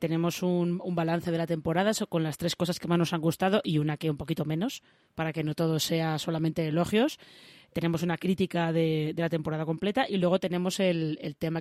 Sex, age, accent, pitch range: female, 20-39, Spanish, 160-195 Hz